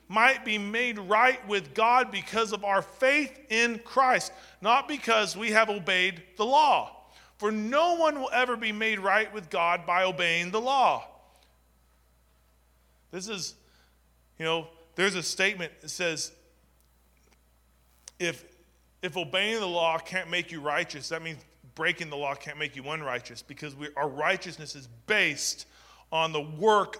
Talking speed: 155 wpm